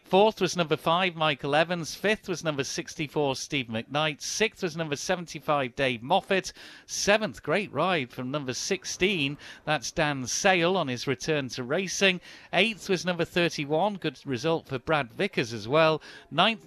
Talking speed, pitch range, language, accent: 160 wpm, 140-180 Hz, English, British